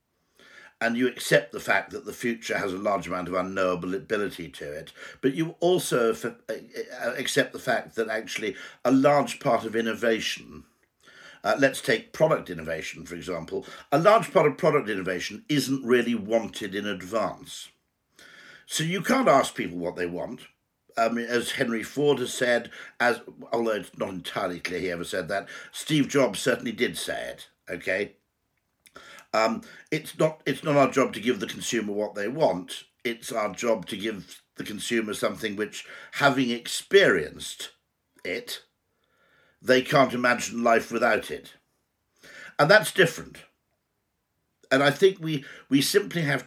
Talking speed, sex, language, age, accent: 155 wpm, male, English, 60-79, British